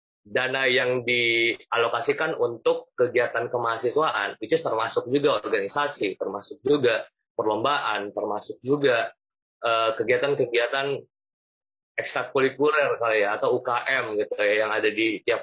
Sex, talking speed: male, 110 wpm